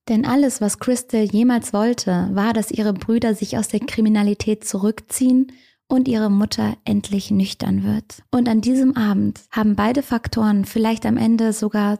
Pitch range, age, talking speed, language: 190-230 Hz, 20-39, 160 wpm, German